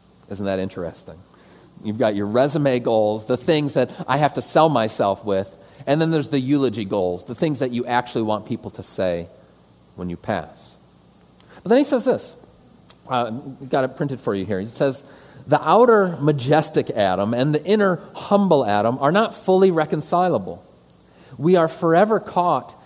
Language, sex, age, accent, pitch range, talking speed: English, male, 40-59, American, 110-175 Hz, 175 wpm